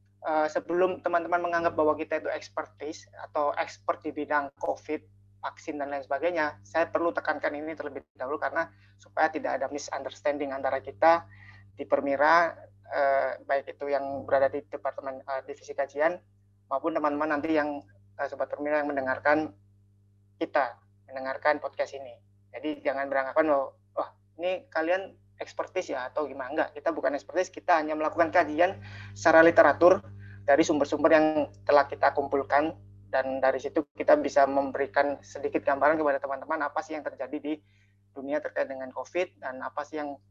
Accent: native